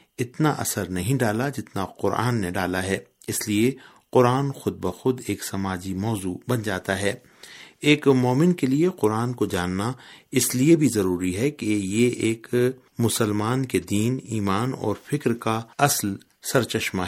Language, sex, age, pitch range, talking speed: Urdu, male, 50-69, 100-135 Hz, 155 wpm